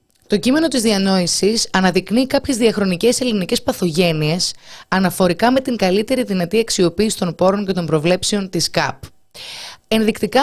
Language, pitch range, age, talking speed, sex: Greek, 170-230 Hz, 20-39, 130 wpm, female